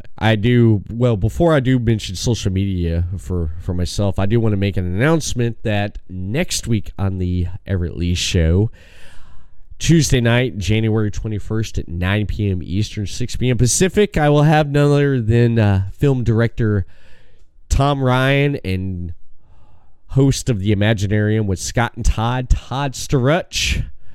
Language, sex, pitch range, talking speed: English, male, 90-115 Hz, 150 wpm